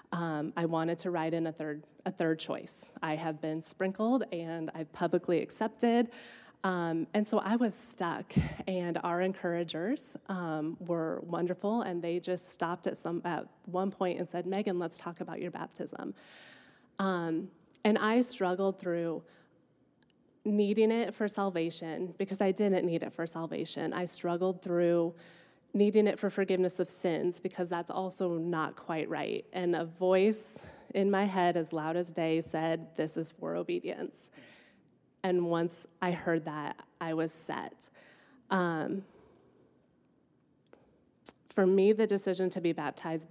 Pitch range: 165-195 Hz